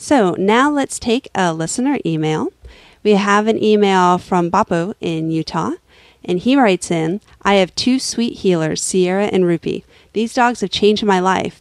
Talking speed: 170 wpm